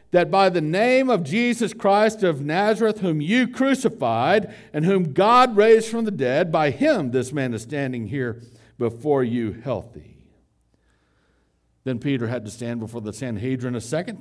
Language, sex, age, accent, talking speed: English, male, 60-79, American, 165 wpm